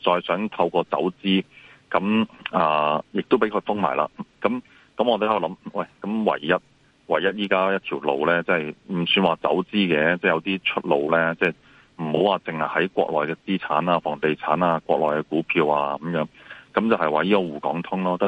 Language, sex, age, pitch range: Chinese, male, 30-49, 80-95 Hz